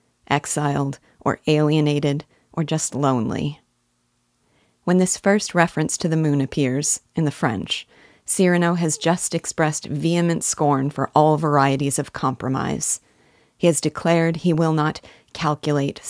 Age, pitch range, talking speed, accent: 40-59, 140-165 Hz, 130 wpm, American